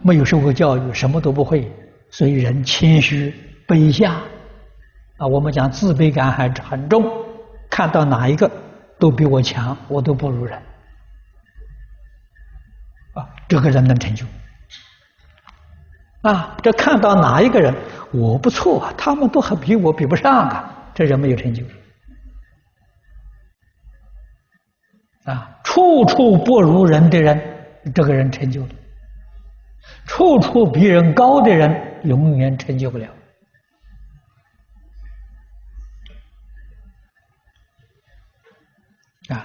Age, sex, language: 60-79, male, Chinese